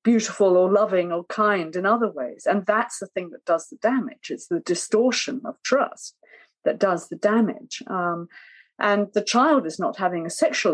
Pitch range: 195-260 Hz